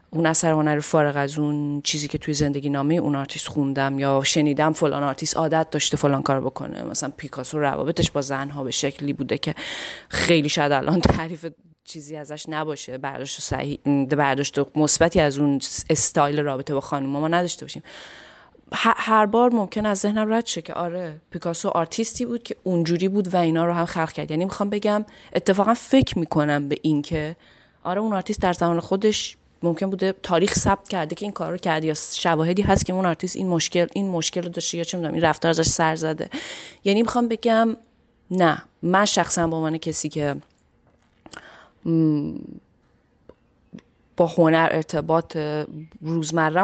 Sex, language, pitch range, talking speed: female, Persian, 145-180 Hz, 175 wpm